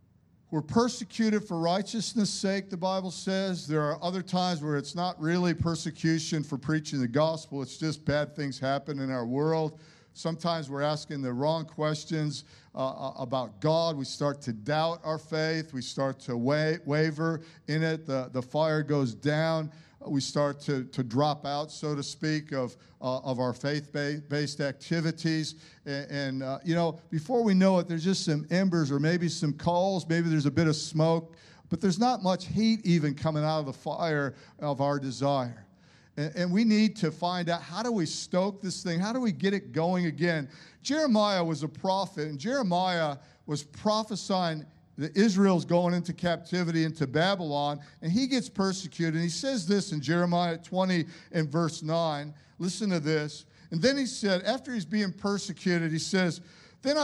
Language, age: English, 50-69